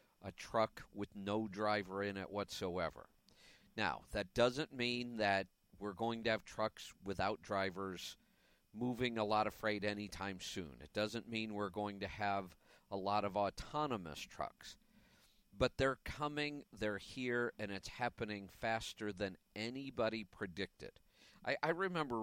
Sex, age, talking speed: male, 50-69, 145 wpm